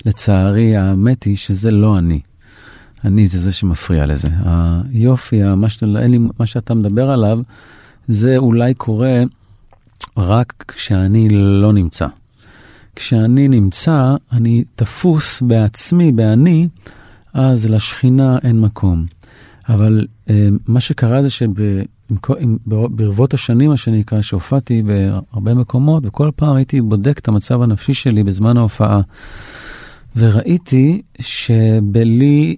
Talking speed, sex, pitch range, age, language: 110 wpm, male, 105-135 Hz, 40-59, Hebrew